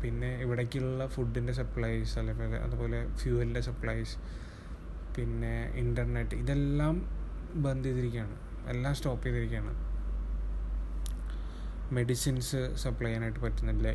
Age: 20-39